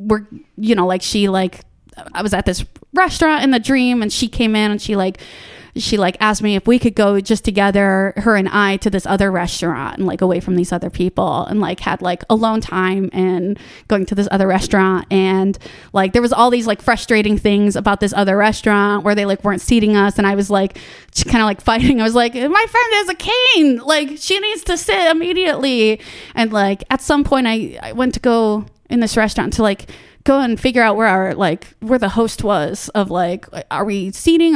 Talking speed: 225 wpm